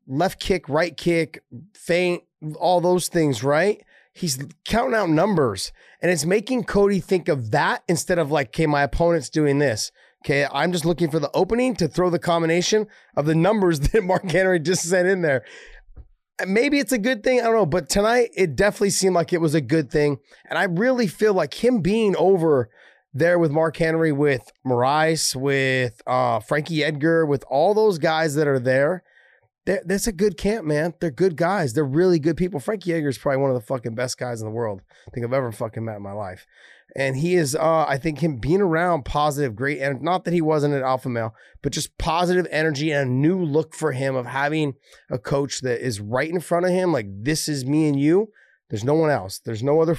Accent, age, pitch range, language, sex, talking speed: American, 30-49, 140-180 Hz, English, male, 215 wpm